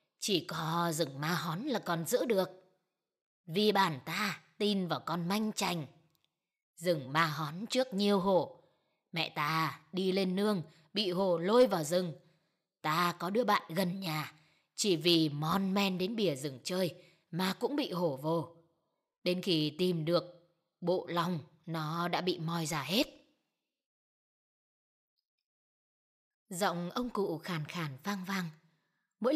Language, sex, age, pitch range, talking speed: Vietnamese, female, 20-39, 165-205 Hz, 145 wpm